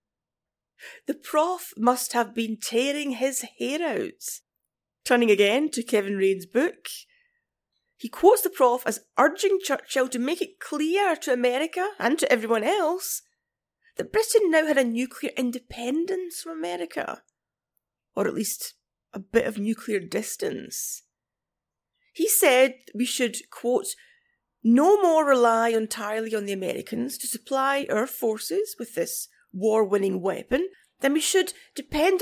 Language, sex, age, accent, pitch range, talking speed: English, female, 30-49, British, 235-370 Hz, 135 wpm